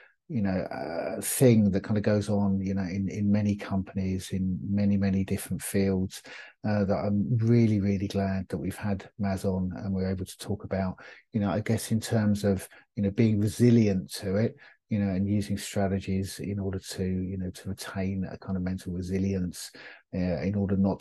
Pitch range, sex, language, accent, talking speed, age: 95-105 Hz, male, English, British, 205 wpm, 50-69